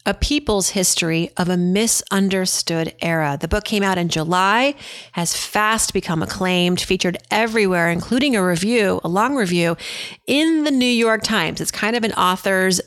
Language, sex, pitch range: English, female, 175-220 Hz